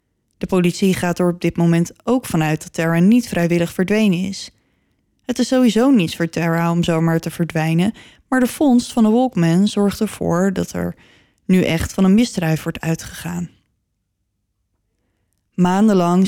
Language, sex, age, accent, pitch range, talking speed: Dutch, female, 20-39, Dutch, 165-200 Hz, 160 wpm